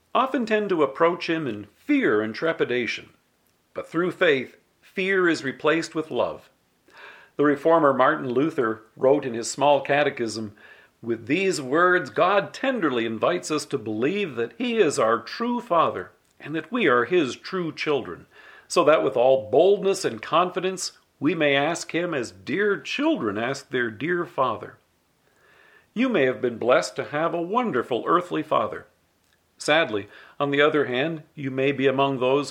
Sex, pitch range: male, 130-180 Hz